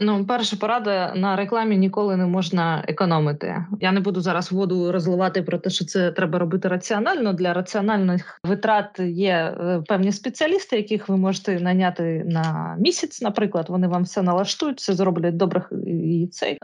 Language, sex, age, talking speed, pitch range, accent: Ukrainian, female, 20-39, 155 wpm, 180-210 Hz, native